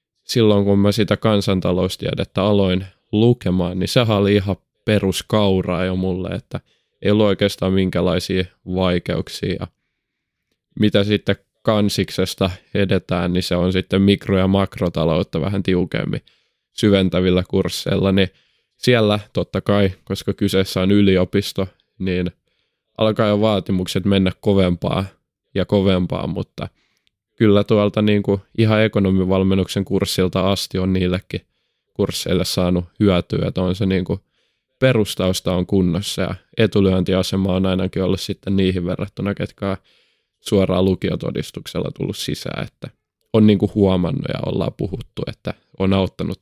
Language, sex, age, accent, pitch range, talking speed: Finnish, male, 20-39, native, 95-100 Hz, 125 wpm